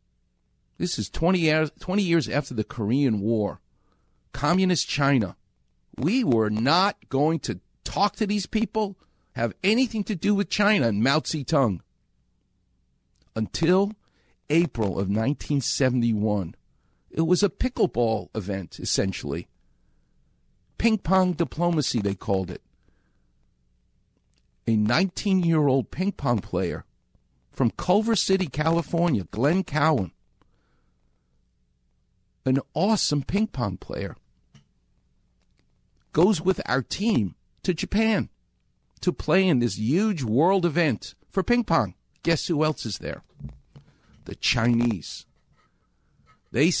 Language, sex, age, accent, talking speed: English, male, 50-69, American, 105 wpm